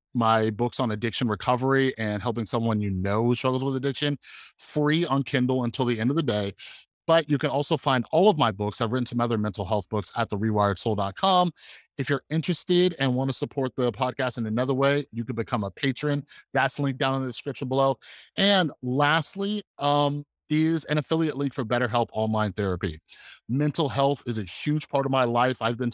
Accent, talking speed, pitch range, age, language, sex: American, 205 wpm, 110-140 Hz, 30-49, English, male